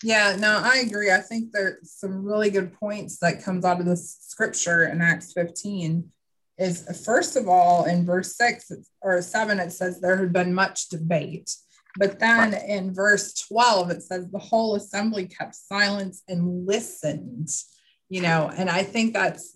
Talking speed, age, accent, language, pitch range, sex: 170 wpm, 30-49, American, English, 170-205 Hz, female